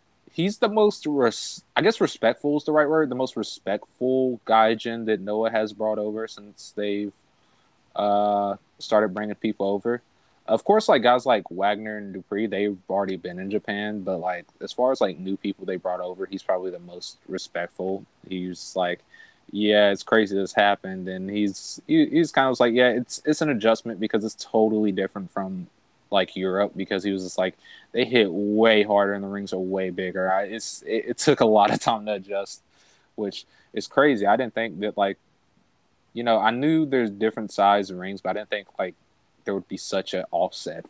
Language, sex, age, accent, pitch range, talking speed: English, male, 20-39, American, 95-115 Hz, 200 wpm